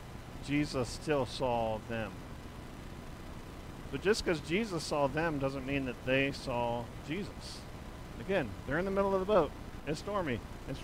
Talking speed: 150 wpm